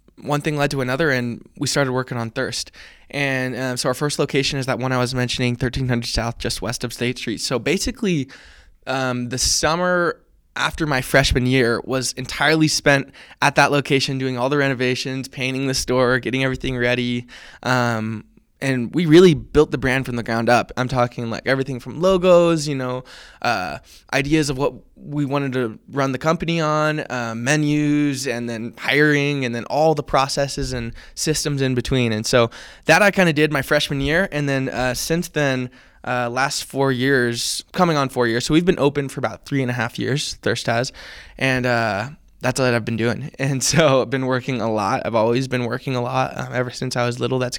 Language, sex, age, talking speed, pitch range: English, male, 20-39, 205 wpm, 125-145 Hz